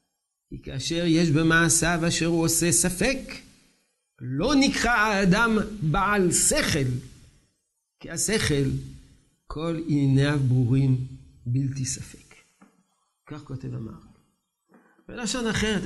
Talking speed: 95 wpm